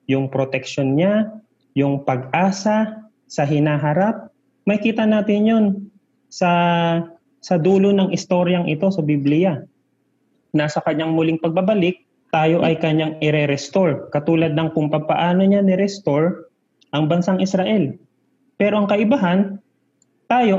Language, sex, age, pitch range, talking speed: Filipino, male, 30-49, 150-200 Hz, 120 wpm